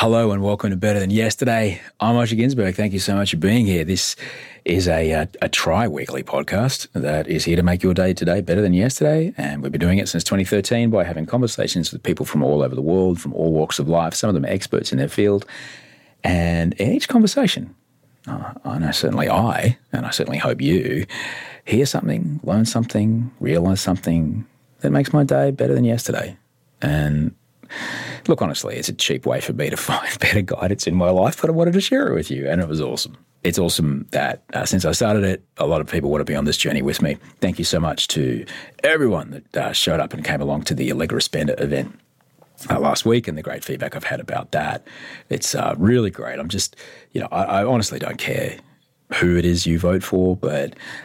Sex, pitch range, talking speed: male, 85-115 Hz, 220 wpm